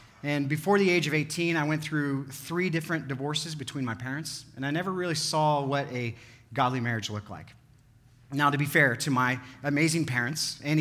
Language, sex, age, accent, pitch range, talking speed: English, male, 40-59, American, 125-155 Hz, 195 wpm